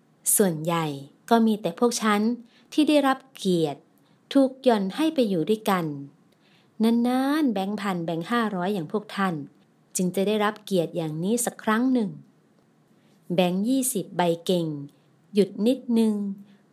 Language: Thai